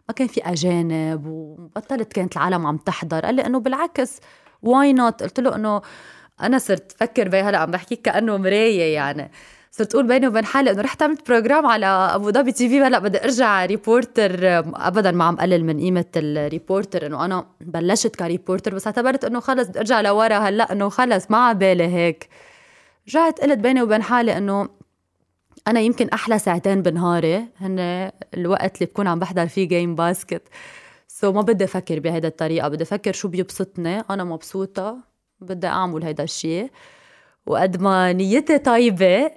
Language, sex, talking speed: Arabic, female, 165 wpm